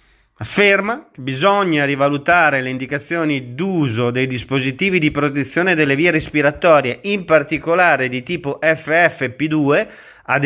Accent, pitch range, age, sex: native, 120-165 Hz, 40-59, male